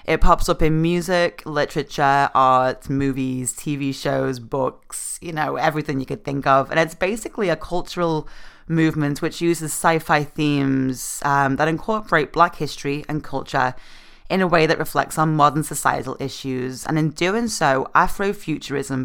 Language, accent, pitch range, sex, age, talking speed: English, British, 135-160 Hz, female, 20-39, 155 wpm